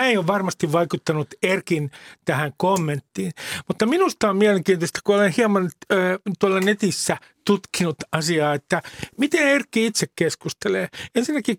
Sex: male